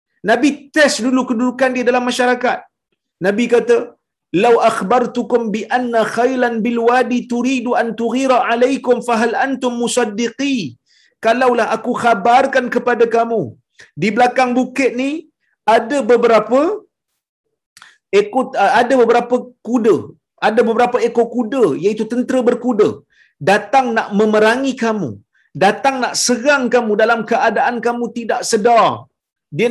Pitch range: 175-250 Hz